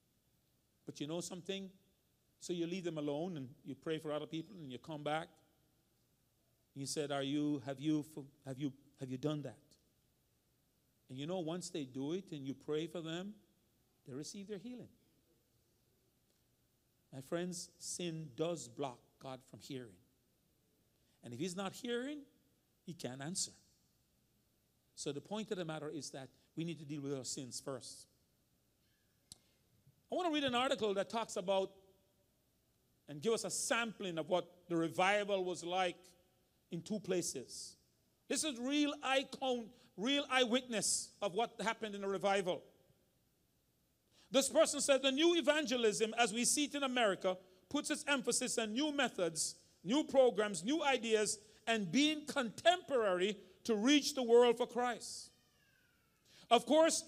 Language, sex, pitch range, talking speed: English, male, 150-240 Hz, 150 wpm